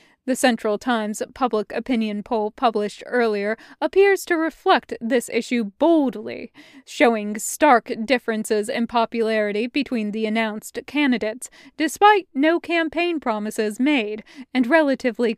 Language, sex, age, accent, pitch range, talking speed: English, female, 20-39, American, 220-305 Hz, 115 wpm